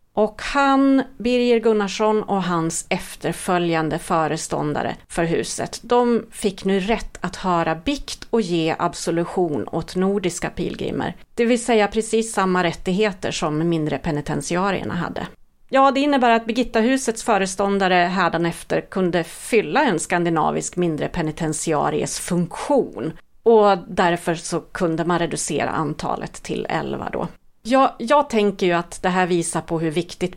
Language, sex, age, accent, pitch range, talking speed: Swedish, female, 40-59, native, 170-230 Hz, 135 wpm